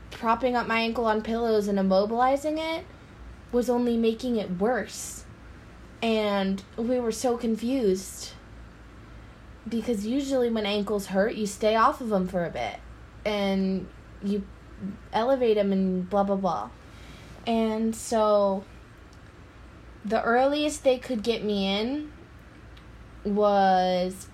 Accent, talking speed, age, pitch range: American, 125 wpm, 20-39, 195-230 Hz